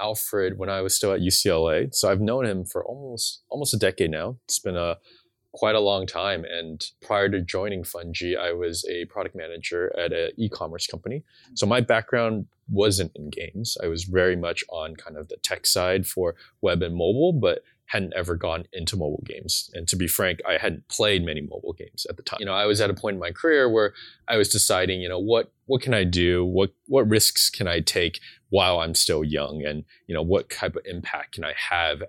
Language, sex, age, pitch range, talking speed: English, male, 20-39, 90-125 Hz, 225 wpm